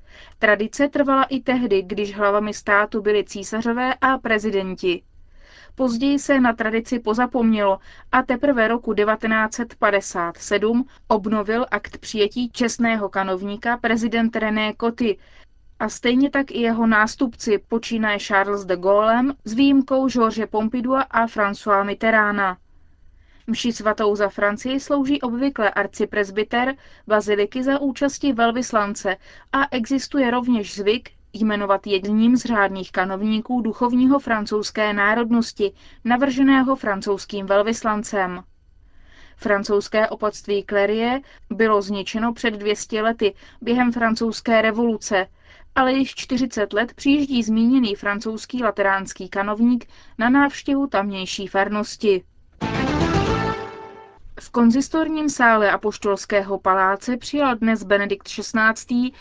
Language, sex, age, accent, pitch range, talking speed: Czech, female, 20-39, native, 205-245 Hz, 105 wpm